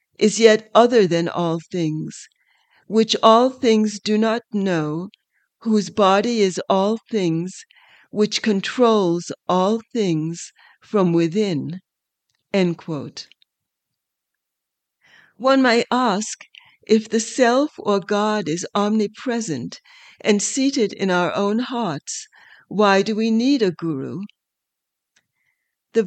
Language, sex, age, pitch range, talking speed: English, female, 60-79, 185-230 Hz, 105 wpm